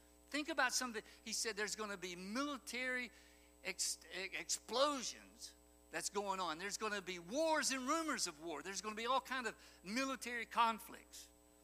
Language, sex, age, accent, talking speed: English, male, 60-79, American, 170 wpm